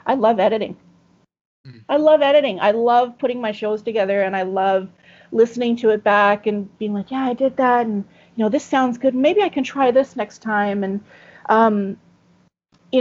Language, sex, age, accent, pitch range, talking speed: English, female, 40-59, American, 200-250 Hz, 195 wpm